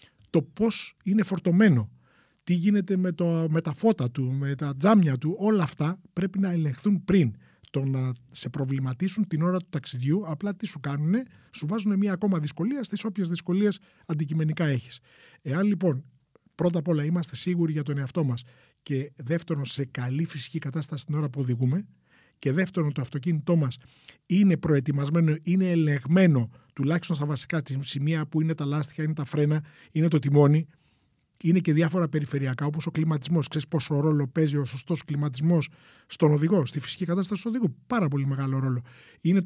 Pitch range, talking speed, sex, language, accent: 140-180 Hz, 175 wpm, male, Greek, native